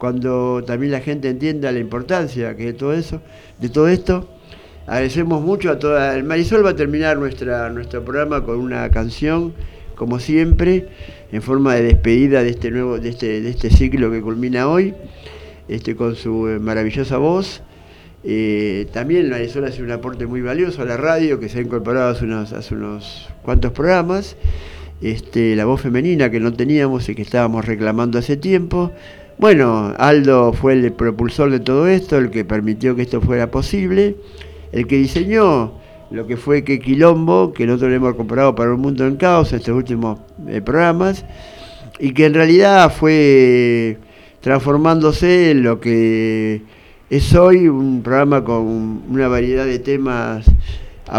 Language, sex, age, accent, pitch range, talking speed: Spanish, male, 50-69, Argentinian, 115-145 Hz, 150 wpm